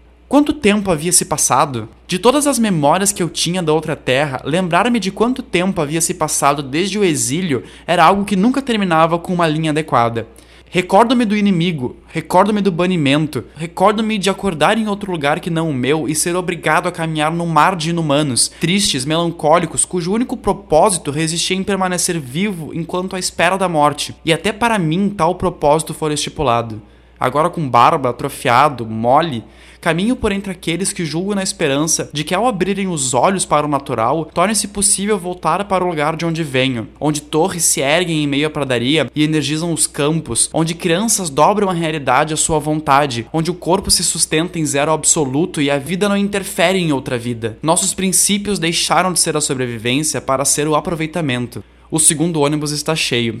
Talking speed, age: 185 wpm, 20-39